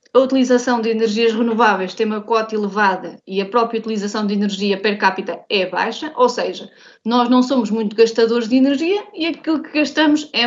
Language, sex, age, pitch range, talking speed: Portuguese, female, 20-39, 210-255 Hz, 190 wpm